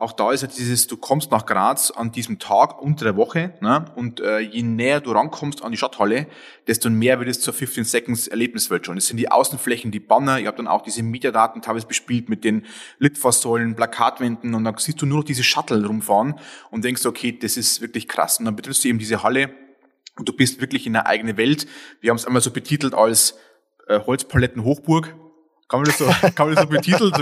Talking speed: 225 wpm